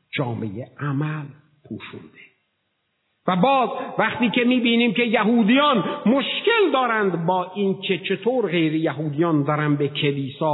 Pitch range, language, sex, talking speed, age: 130-190 Hz, Persian, male, 115 wpm, 50-69